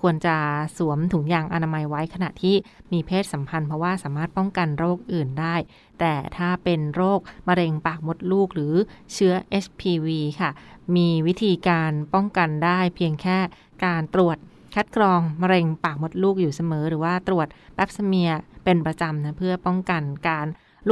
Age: 20-39